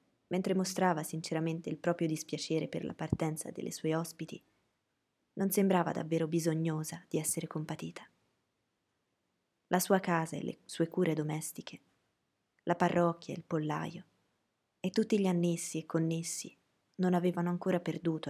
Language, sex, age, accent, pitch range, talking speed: Italian, female, 20-39, native, 160-185 Hz, 140 wpm